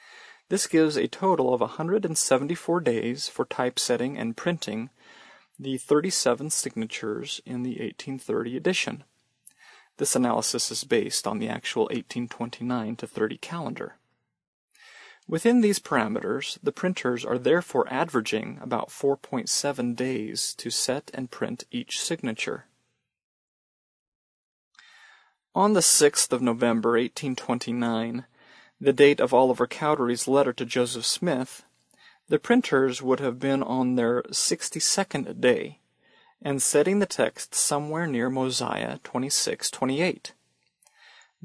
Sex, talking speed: male, 110 wpm